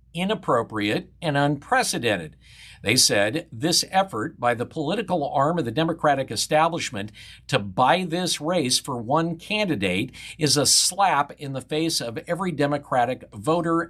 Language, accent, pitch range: English, American, 105-155 Hz